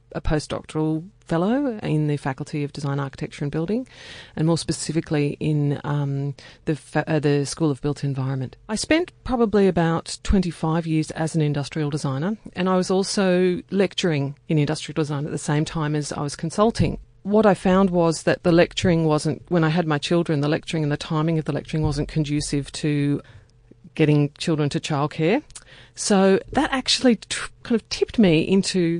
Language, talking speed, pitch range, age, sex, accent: English, 175 wpm, 150-185 Hz, 40-59, female, Australian